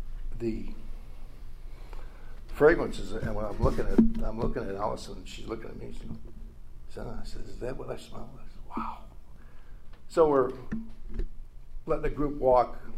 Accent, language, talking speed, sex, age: American, English, 155 wpm, male, 60-79